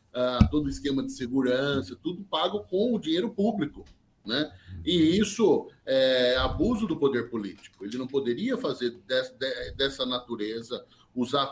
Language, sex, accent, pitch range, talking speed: Portuguese, male, Brazilian, 115-170 Hz, 150 wpm